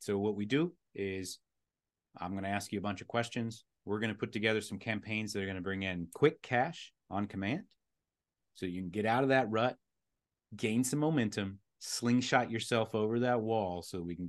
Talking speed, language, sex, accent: 210 wpm, English, male, American